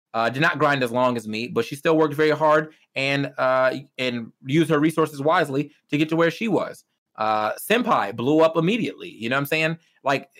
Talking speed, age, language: 220 wpm, 30-49, English